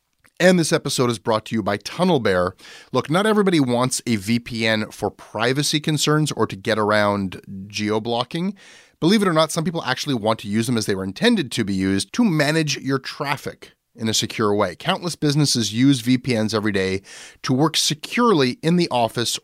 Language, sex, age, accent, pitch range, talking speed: English, male, 30-49, American, 110-155 Hz, 190 wpm